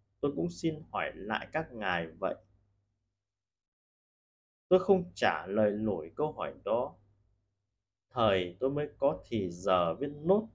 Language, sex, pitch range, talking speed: Vietnamese, male, 100-145 Hz, 135 wpm